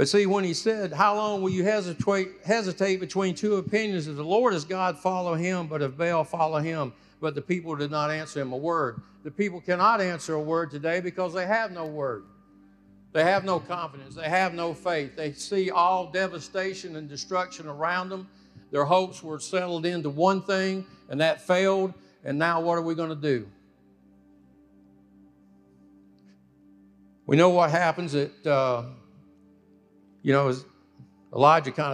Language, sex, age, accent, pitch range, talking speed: English, male, 60-79, American, 140-180 Hz, 170 wpm